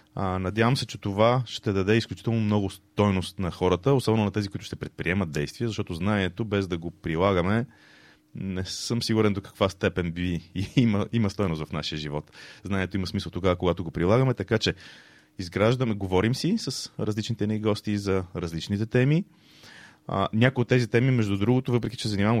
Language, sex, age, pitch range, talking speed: Bulgarian, male, 30-49, 90-110 Hz, 175 wpm